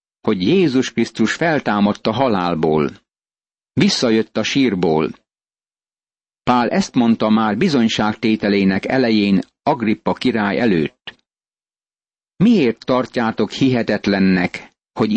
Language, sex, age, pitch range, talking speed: Hungarian, male, 60-79, 110-130 Hz, 85 wpm